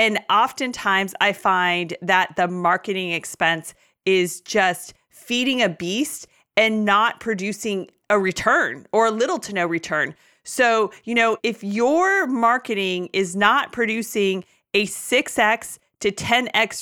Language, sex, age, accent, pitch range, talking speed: English, female, 30-49, American, 195-240 Hz, 130 wpm